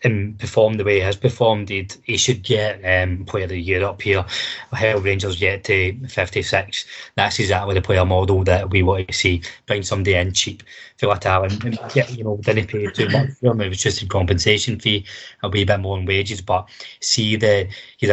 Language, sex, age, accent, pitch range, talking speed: English, male, 20-39, British, 95-110 Hz, 220 wpm